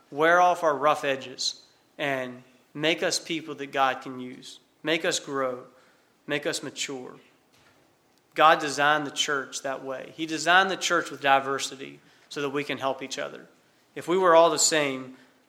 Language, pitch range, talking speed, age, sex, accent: English, 135-155 Hz, 170 wpm, 30-49, male, American